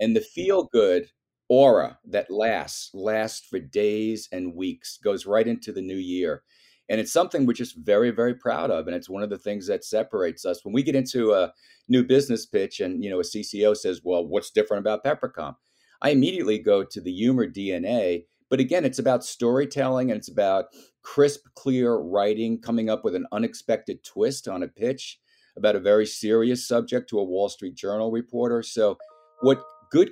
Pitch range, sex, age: 100-130 Hz, male, 50-69